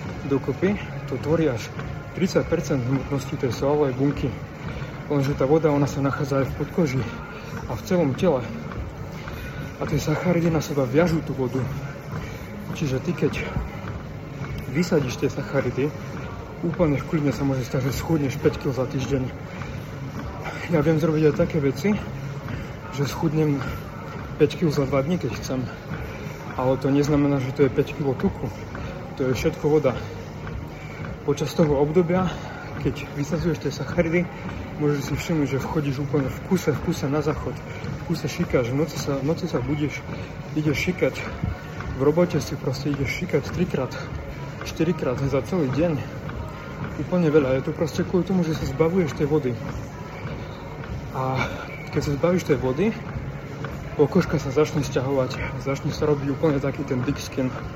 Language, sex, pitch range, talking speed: Slovak, male, 135-155 Hz, 150 wpm